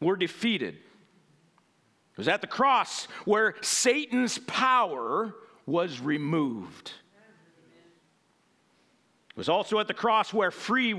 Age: 50-69